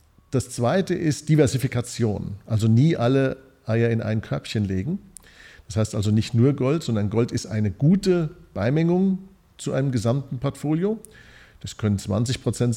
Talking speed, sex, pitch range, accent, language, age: 150 wpm, male, 110-135 Hz, German, German, 50-69